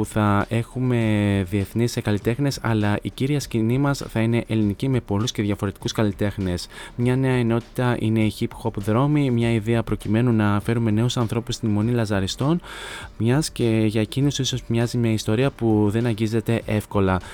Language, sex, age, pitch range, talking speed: Greek, male, 20-39, 105-120 Hz, 165 wpm